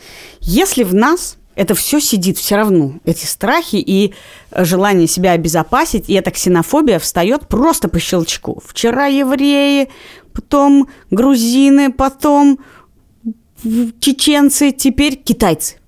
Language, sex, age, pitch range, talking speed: Russian, female, 30-49, 180-275 Hz, 110 wpm